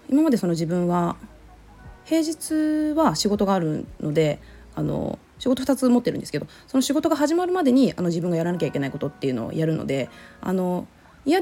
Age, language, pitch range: 20-39, Japanese, 165-265 Hz